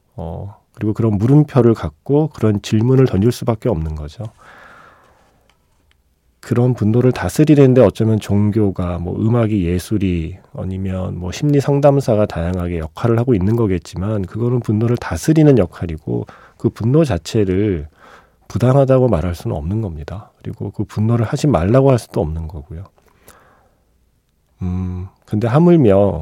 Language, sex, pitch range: Korean, male, 90-125 Hz